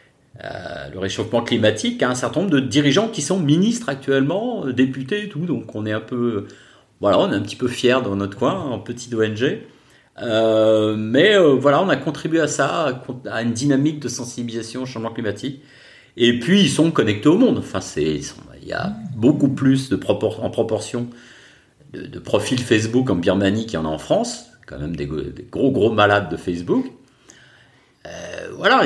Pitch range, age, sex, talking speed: 100-135 Hz, 40-59, male, 195 wpm